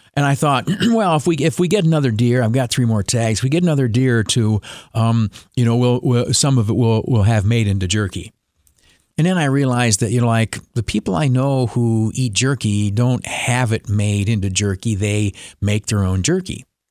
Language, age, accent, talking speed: English, 50-69, American, 225 wpm